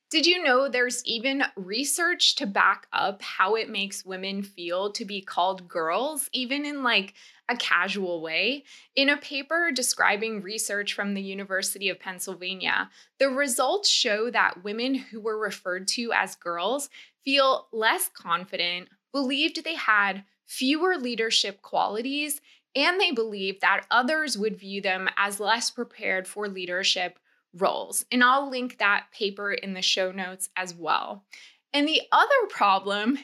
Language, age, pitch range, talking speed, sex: English, 20-39, 195-265 Hz, 150 wpm, female